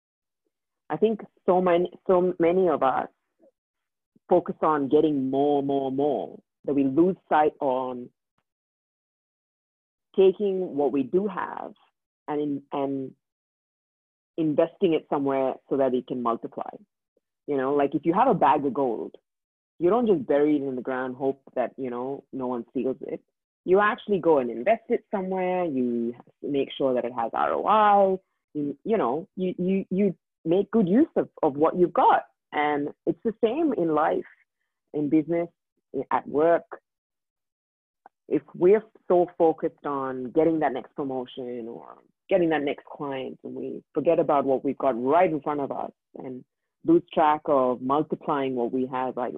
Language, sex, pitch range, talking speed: English, female, 130-180 Hz, 165 wpm